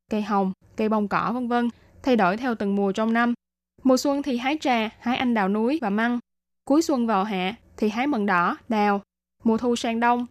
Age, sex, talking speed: 10-29, female, 220 wpm